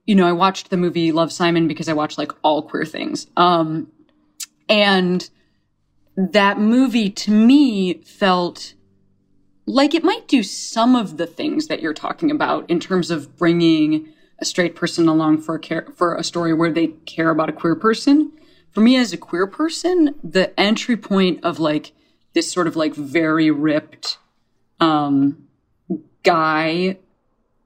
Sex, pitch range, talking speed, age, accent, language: female, 160-215 Hz, 160 wpm, 20-39, American, English